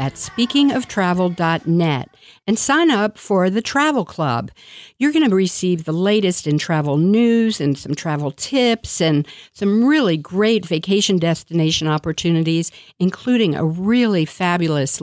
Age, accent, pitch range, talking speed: 50-69, American, 160-215 Hz, 130 wpm